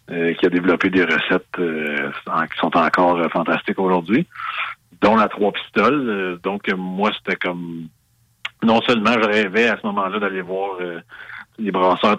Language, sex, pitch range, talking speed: French, male, 90-100 Hz, 150 wpm